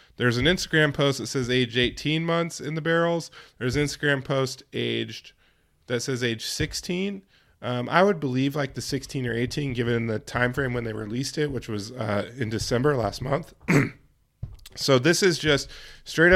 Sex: male